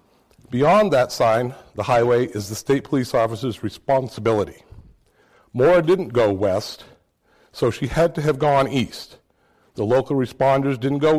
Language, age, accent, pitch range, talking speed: English, 50-69, American, 115-145 Hz, 145 wpm